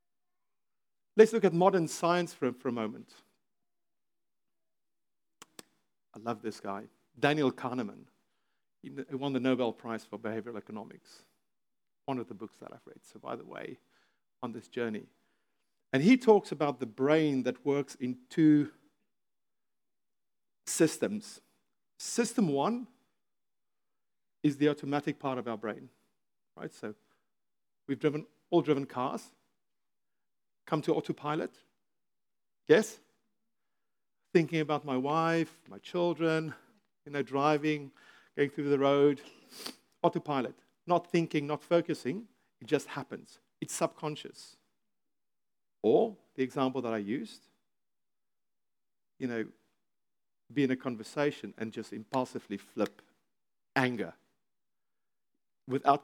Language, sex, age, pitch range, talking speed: English, male, 50-69, 130-165 Hz, 120 wpm